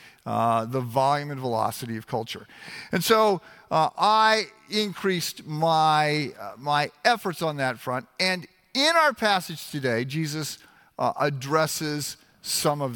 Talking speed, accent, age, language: 135 wpm, American, 50-69, English